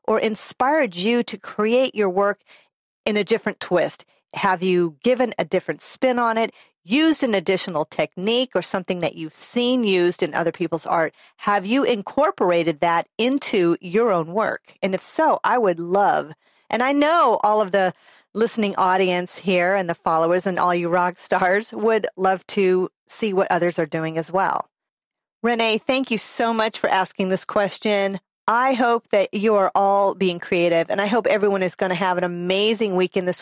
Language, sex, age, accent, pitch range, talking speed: English, female, 40-59, American, 180-235 Hz, 185 wpm